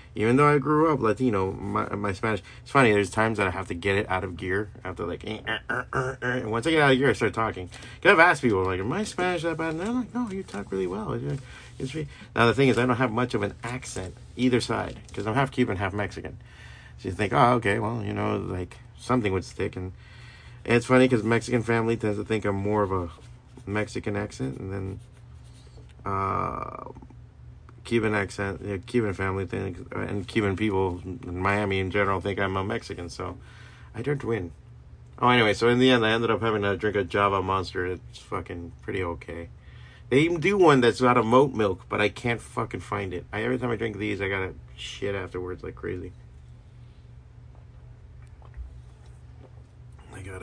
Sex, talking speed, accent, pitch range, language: male, 210 wpm, American, 95-120 Hz, English